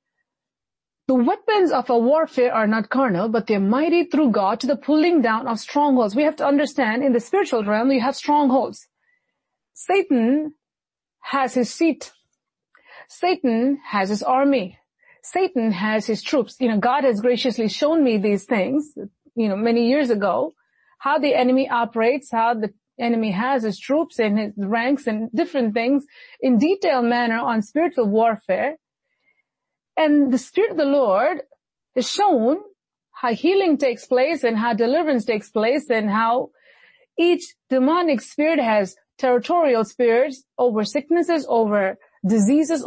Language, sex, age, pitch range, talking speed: English, female, 30-49, 230-300 Hz, 150 wpm